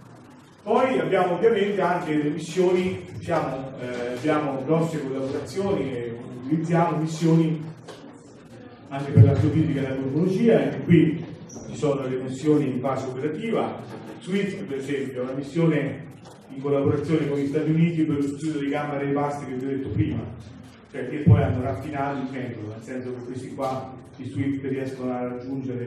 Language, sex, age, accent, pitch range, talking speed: Italian, male, 30-49, native, 125-150 Hz, 160 wpm